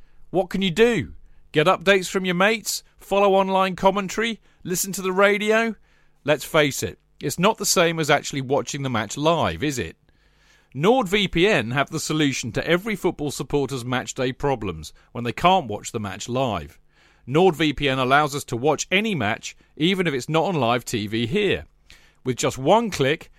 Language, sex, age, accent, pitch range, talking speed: English, male, 40-59, British, 125-180 Hz, 175 wpm